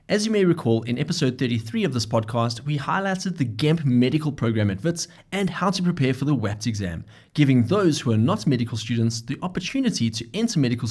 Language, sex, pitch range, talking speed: English, male, 115-165 Hz, 210 wpm